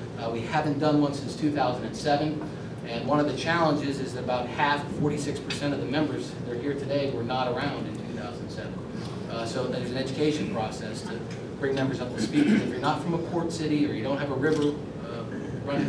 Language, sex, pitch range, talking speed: English, male, 130-145 Hz, 215 wpm